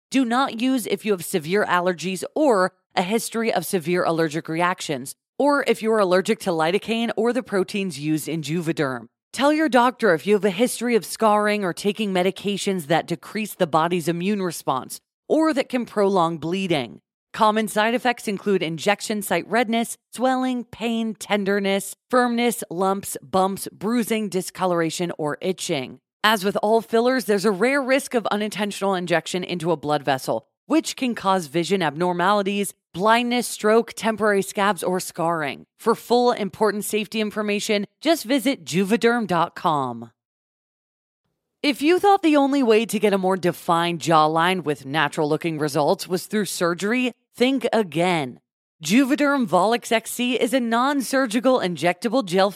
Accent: American